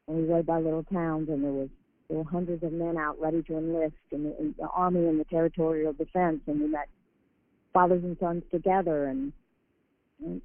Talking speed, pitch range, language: 205 wpm, 160-180 Hz, English